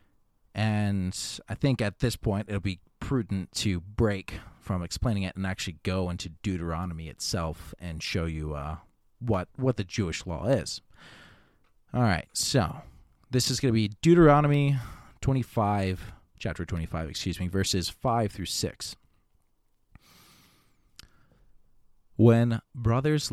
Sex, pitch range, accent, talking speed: male, 90-125 Hz, American, 130 wpm